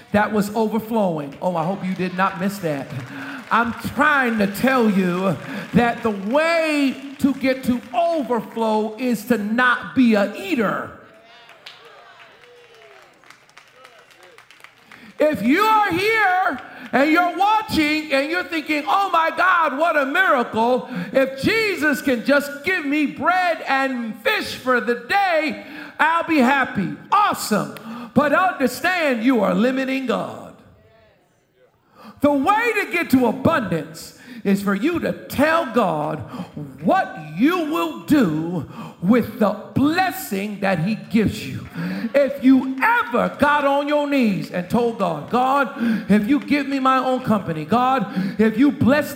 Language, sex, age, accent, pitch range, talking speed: English, male, 50-69, American, 215-290 Hz, 135 wpm